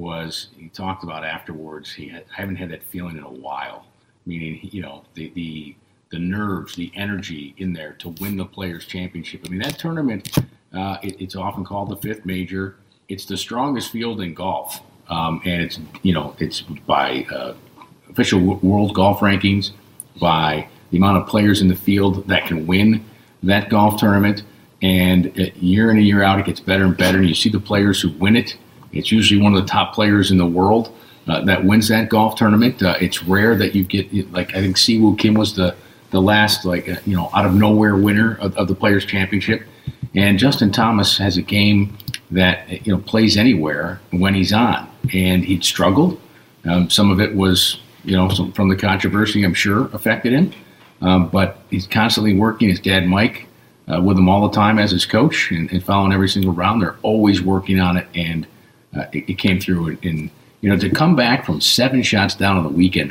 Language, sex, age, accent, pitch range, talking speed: English, male, 40-59, American, 90-105 Hz, 205 wpm